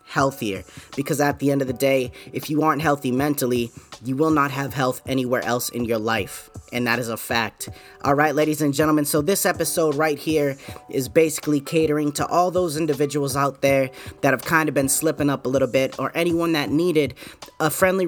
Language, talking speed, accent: English, 210 wpm, American